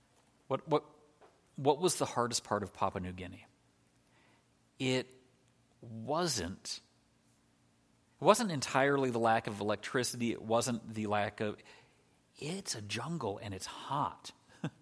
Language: English